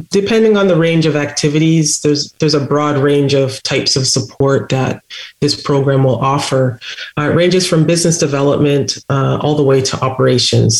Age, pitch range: 30-49, 135-155 Hz